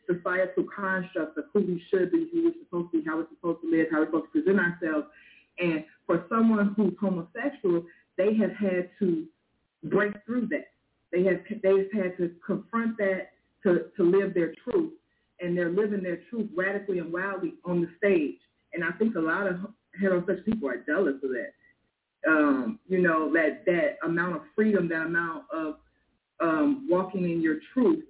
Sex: female